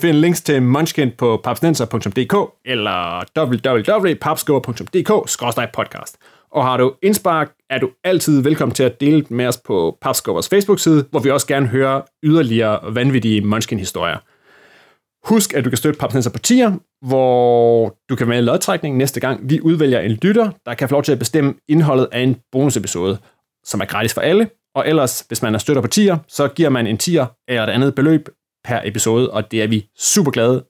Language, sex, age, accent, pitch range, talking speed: Danish, male, 30-49, native, 120-160 Hz, 180 wpm